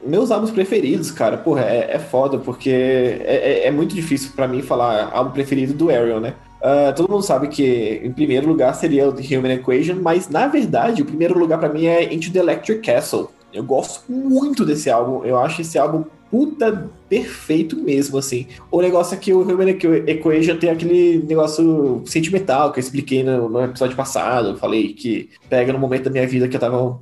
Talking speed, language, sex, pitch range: 205 wpm, Portuguese, male, 130-175 Hz